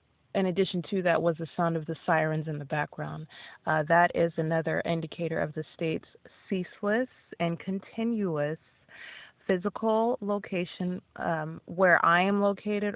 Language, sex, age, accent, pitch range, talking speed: English, female, 30-49, American, 155-175 Hz, 145 wpm